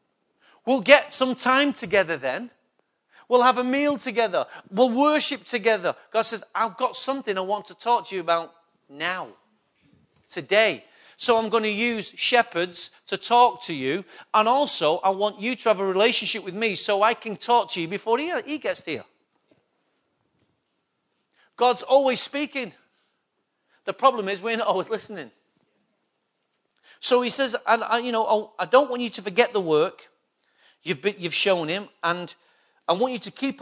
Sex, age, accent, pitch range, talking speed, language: male, 40-59, British, 175-240 Hz, 170 wpm, English